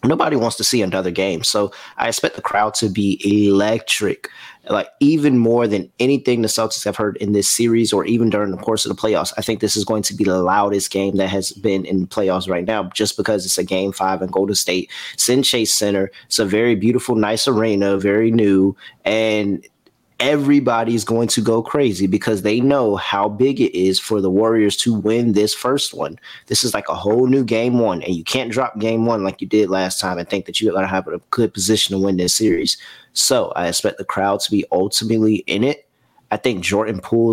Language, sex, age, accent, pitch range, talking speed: English, male, 20-39, American, 100-115 Hz, 225 wpm